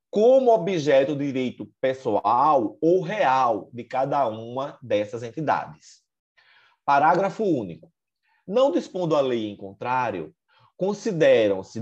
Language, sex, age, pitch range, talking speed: Portuguese, male, 30-49, 115-165 Hz, 105 wpm